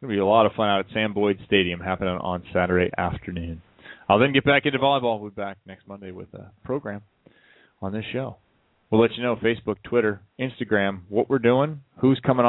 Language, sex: English, male